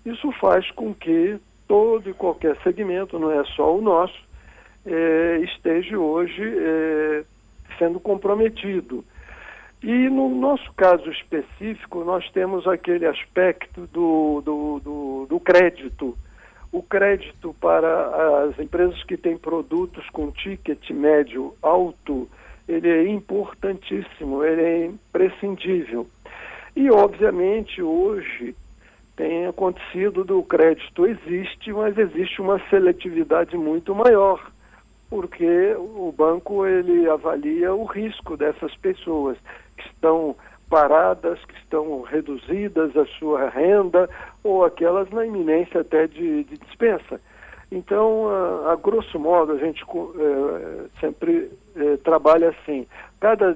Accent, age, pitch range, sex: Brazilian, 60-79, 160-210 Hz, male